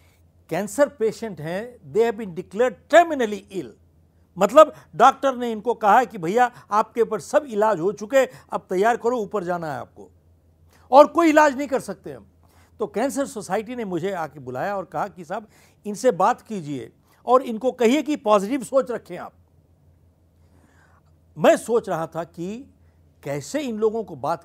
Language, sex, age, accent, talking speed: Hindi, male, 60-79, native, 165 wpm